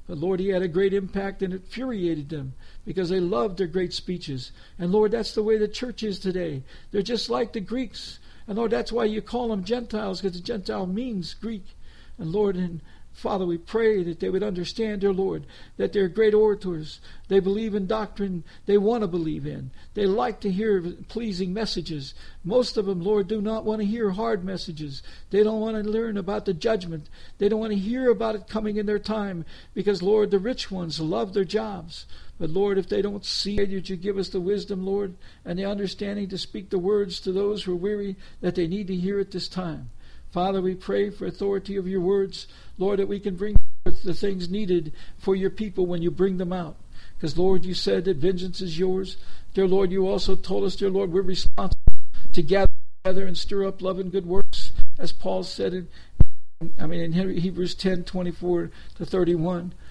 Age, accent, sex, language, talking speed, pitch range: 60-79, American, male, English, 210 wpm, 175-205 Hz